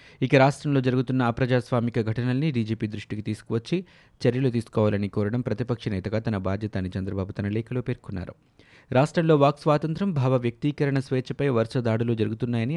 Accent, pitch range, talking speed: native, 110-135 Hz, 135 wpm